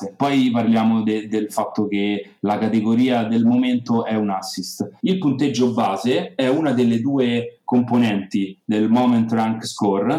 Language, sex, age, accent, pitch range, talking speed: Italian, male, 30-49, native, 105-135 Hz, 140 wpm